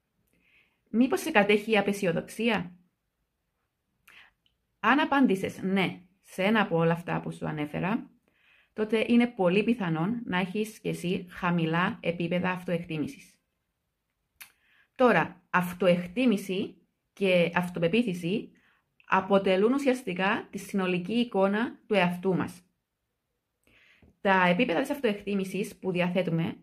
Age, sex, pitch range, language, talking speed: 30-49, female, 175-225 Hz, Greek, 100 wpm